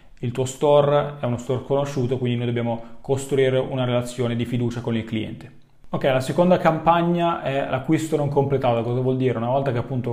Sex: male